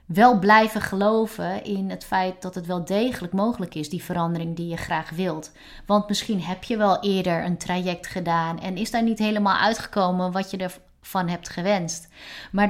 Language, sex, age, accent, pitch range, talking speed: Dutch, female, 30-49, Dutch, 175-210 Hz, 185 wpm